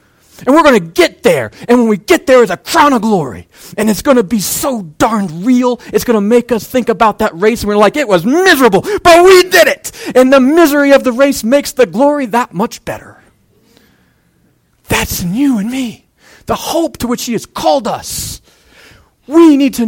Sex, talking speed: male, 215 wpm